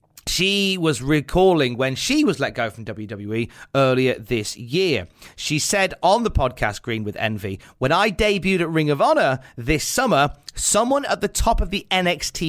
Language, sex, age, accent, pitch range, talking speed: English, male, 30-49, British, 110-155 Hz, 180 wpm